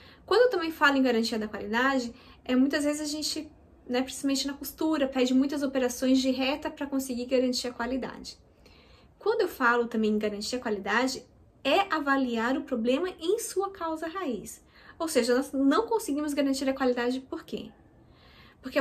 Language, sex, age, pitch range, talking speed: Portuguese, female, 10-29, 240-295 Hz, 170 wpm